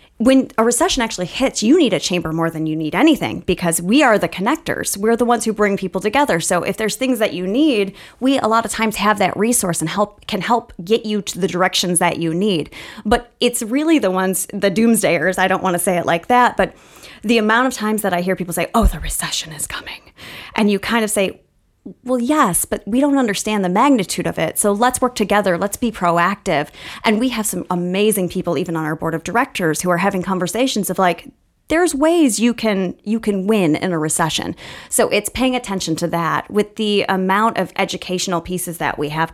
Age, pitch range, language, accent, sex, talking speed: 20-39, 175-230 Hz, English, American, female, 225 wpm